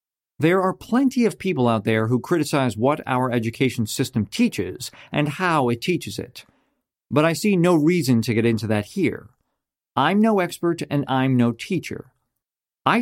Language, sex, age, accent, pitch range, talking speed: English, male, 50-69, American, 125-185 Hz, 170 wpm